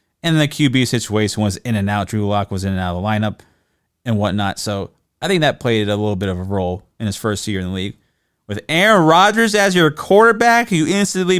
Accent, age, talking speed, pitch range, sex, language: American, 30-49, 235 wpm, 100-160 Hz, male, English